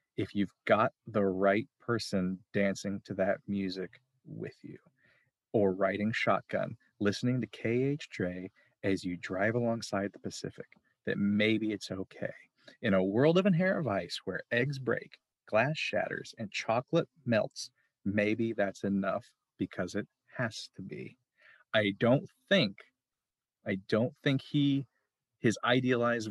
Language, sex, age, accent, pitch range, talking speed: English, male, 40-59, American, 100-125 Hz, 140 wpm